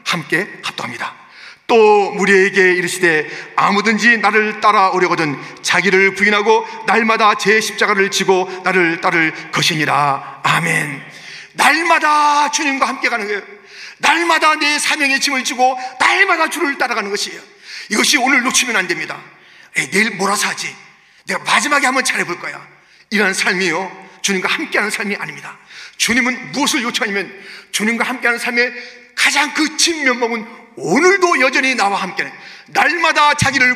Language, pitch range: Korean, 205-285 Hz